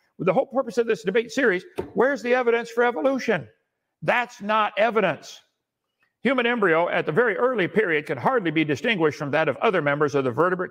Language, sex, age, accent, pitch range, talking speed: English, male, 60-79, American, 165-225 Hz, 195 wpm